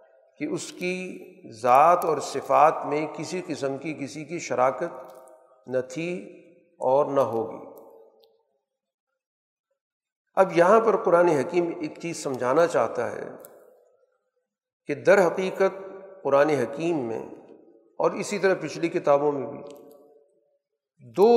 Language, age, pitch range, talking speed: Urdu, 50-69, 145-210 Hz, 120 wpm